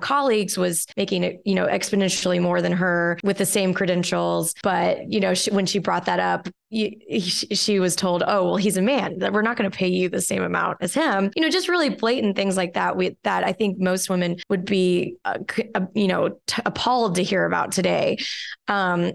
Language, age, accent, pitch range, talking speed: English, 20-39, American, 180-210 Hz, 230 wpm